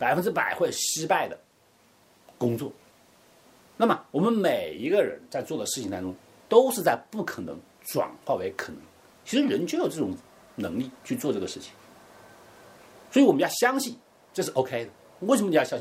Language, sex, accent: Chinese, male, native